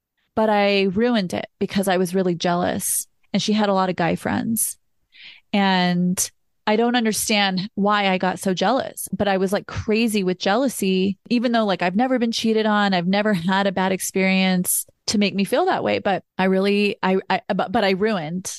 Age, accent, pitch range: 30-49, American, 185-210 Hz